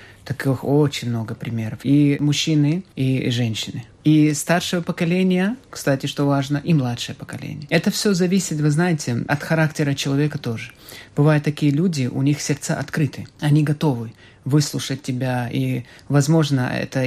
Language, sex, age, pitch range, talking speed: Russian, male, 30-49, 125-150 Hz, 140 wpm